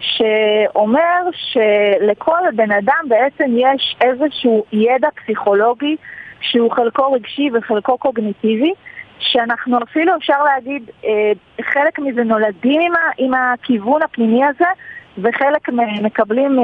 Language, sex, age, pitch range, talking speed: Hebrew, female, 20-39, 215-295 Hz, 95 wpm